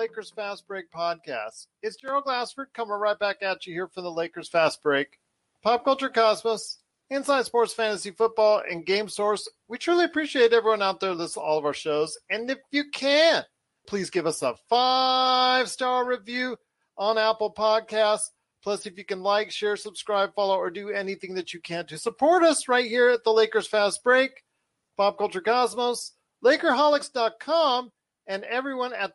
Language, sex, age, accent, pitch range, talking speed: English, male, 40-59, American, 175-235 Hz, 175 wpm